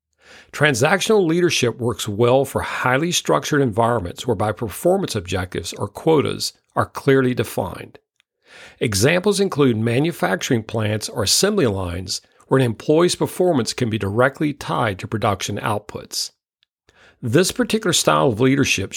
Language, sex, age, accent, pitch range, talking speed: English, male, 50-69, American, 105-150 Hz, 125 wpm